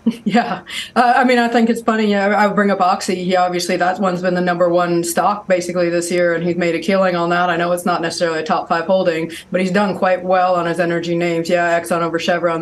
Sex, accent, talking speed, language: female, American, 260 wpm, English